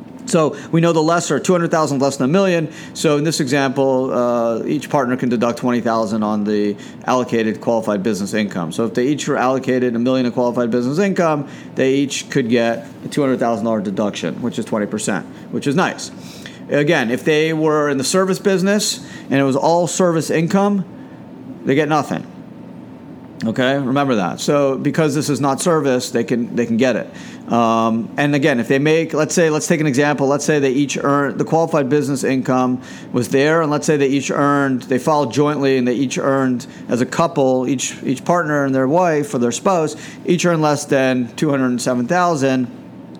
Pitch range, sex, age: 125-155 Hz, male, 40-59